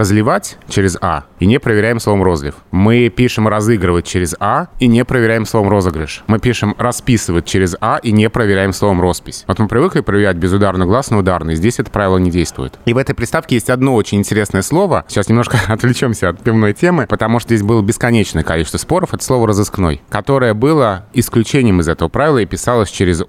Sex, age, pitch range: male, 20-39, 90-115 Hz